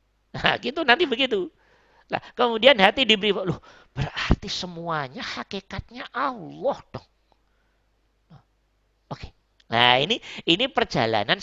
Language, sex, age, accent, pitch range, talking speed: Indonesian, male, 40-59, native, 140-215 Hz, 100 wpm